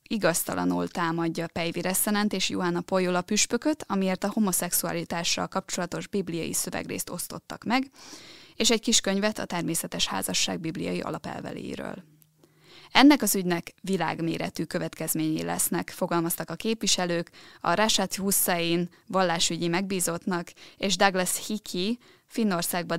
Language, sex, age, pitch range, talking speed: Hungarian, female, 20-39, 170-205 Hz, 110 wpm